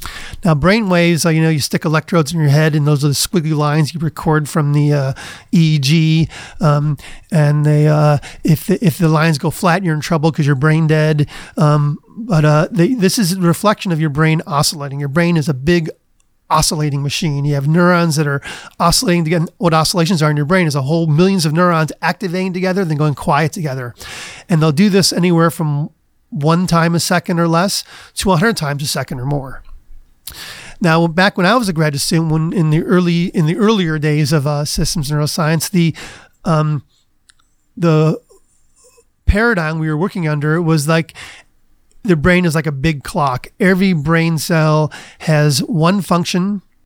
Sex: male